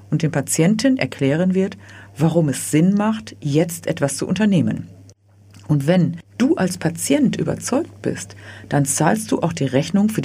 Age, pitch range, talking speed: 50-69, 135-210 Hz, 160 wpm